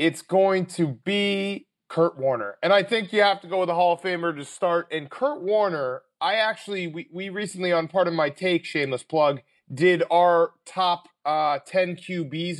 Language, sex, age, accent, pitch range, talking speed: English, male, 30-49, American, 155-185 Hz, 195 wpm